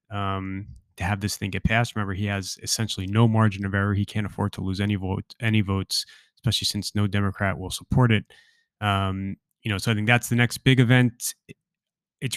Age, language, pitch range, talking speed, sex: 20-39, English, 100-115 Hz, 210 wpm, male